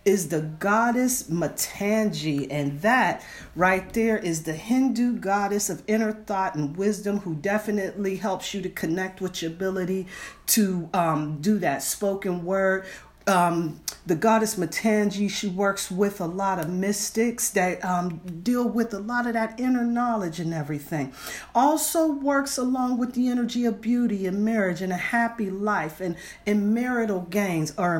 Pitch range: 175-225 Hz